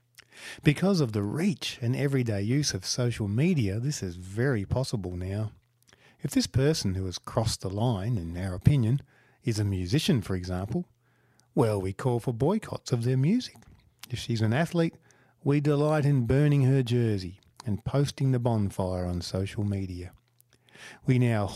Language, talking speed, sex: English, 160 wpm, male